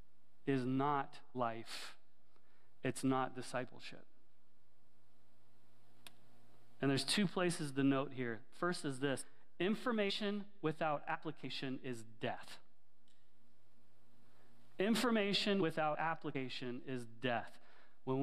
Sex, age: male, 30-49